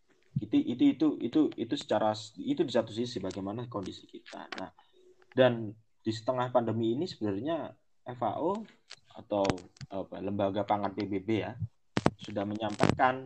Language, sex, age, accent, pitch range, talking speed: Indonesian, male, 20-39, native, 105-145 Hz, 130 wpm